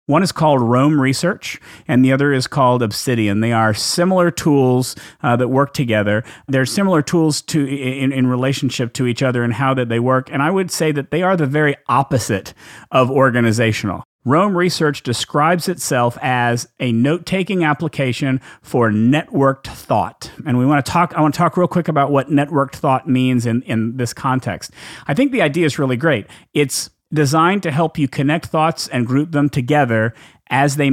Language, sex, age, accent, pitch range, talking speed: English, male, 40-59, American, 125-160 Hz, 190 wpm